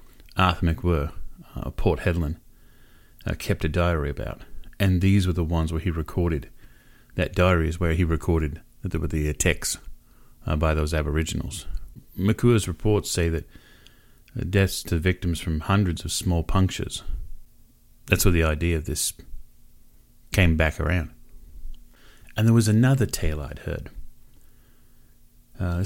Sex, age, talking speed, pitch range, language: male, 30-49, 145 wpm, 80-105 Hz, English